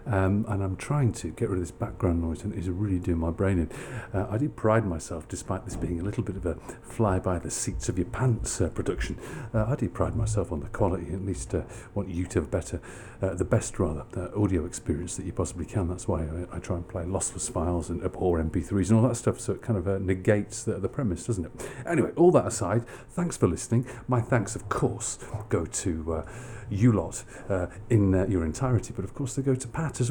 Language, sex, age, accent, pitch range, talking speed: English, male, 50-69, British, 90-120 Hz, 235 wpm